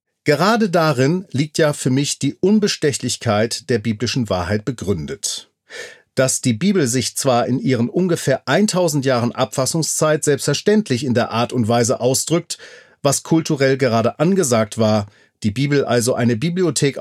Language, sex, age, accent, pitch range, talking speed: German, male, 40-59, German, 120-160 Hz, 140 wpm